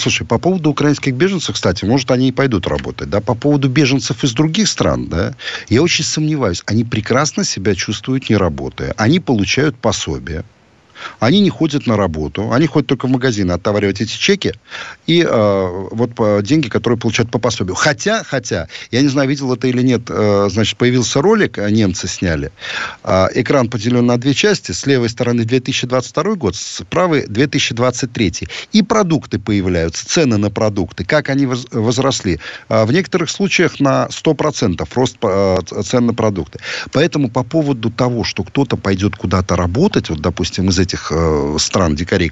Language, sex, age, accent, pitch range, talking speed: Russian, male, 50-69, native, 100-140 Hz, 160 wpm